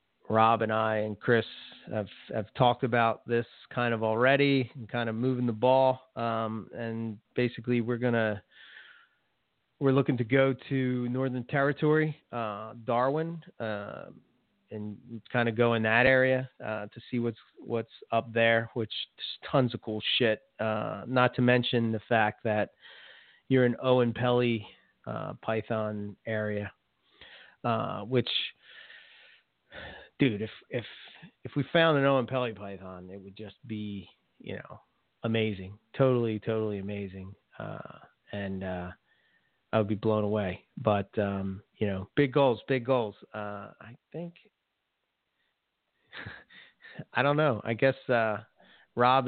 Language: English